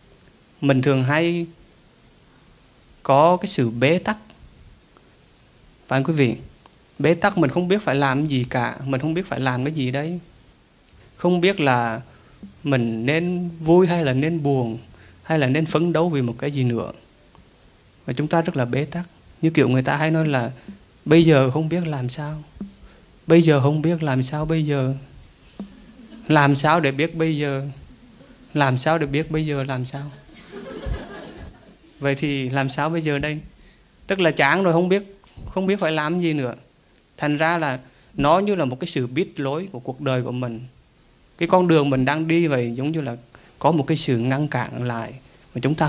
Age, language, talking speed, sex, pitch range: 20-39, Vietnamese, 190 wpm, male, 130-165 Hz